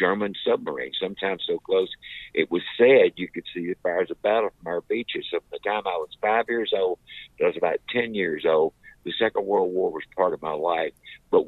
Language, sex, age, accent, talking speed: English, male, 50-69, American, 225 wpm